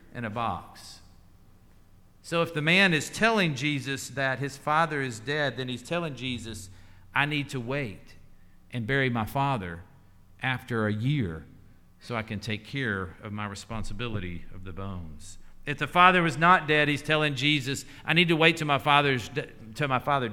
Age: 50-69